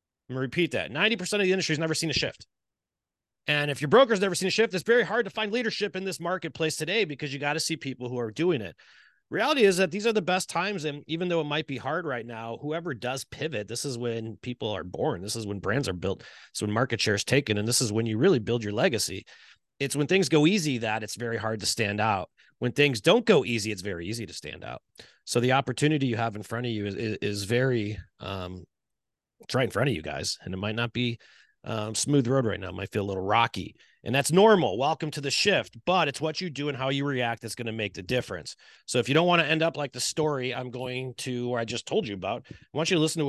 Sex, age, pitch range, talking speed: male, 30-49, 110-155 Hz, 275 wpm